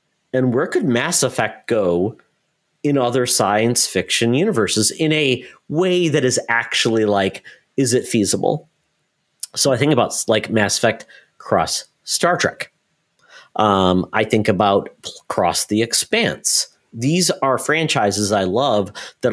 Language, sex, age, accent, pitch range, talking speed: English, male, 40-59, American, 105-140 Hz, 135 wpm